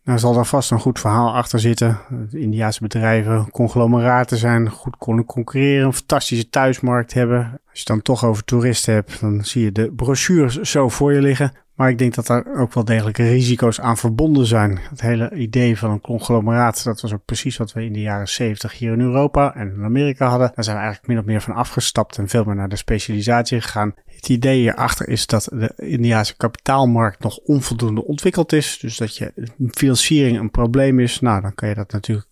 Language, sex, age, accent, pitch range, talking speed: Dutch, male, 30-49, Dutch, 110-125 Hz, 210 wpm